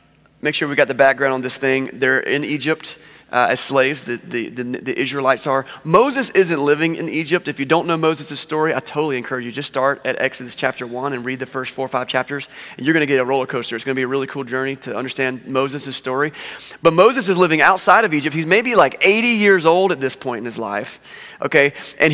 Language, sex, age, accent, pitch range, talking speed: English, male, 30-49, American, 135-170 Hz, 245 wpm